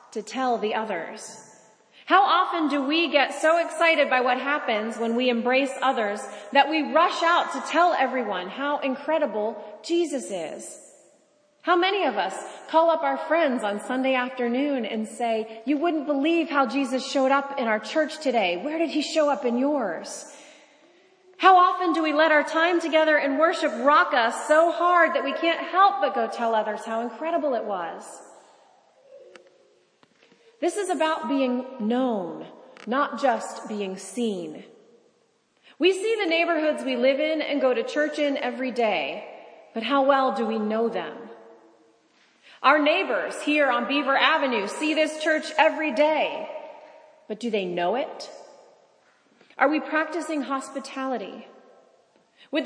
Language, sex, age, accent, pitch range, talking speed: English, female, 30-49, American, 245-315 Hz, 155 wpm